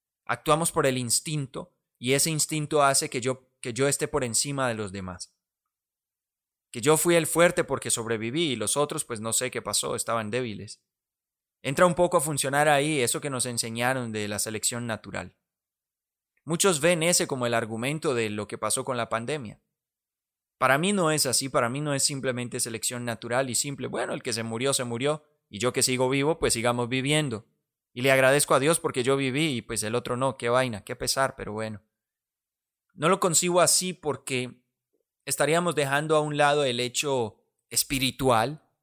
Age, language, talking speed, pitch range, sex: 20-39, Spanish, 190 wpm, 115-150 Hz, male